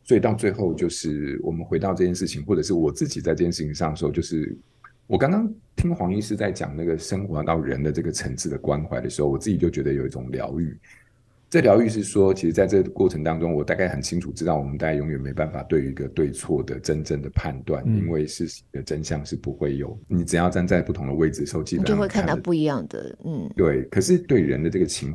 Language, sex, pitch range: Chinese, male, 70-95 Hz